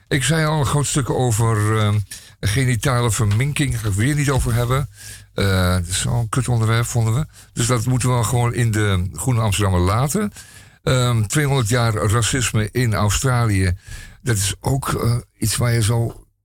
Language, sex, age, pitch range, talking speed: Dutch, male, 50-69, 100-120 Hz, 185 wpm